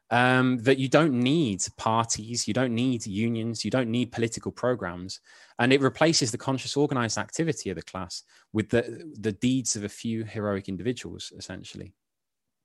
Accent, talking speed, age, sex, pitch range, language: British, 165 wpm, 20-39, male, 95-125 Hz, English